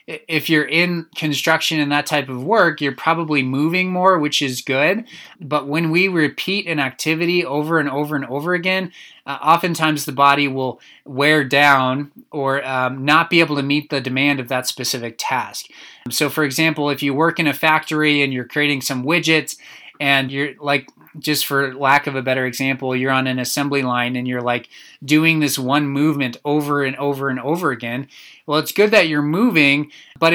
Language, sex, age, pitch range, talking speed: English, male, 20-39, 140-165 Hz, 190 wpm